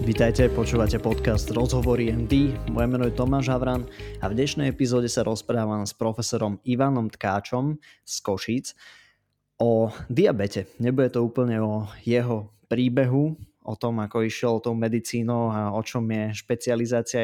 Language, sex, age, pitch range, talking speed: Slovak, male, 20-39, 110-125 Hz, 145 wpm